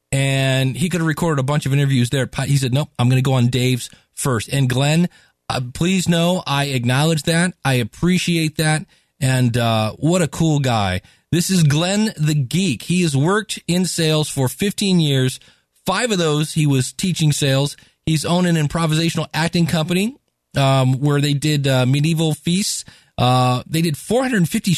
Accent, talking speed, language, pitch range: American, 180 wpm, English, 125-165 Hz